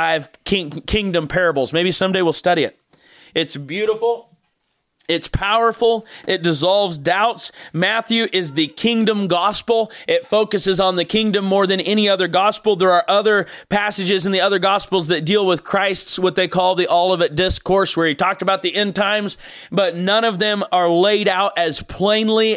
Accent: American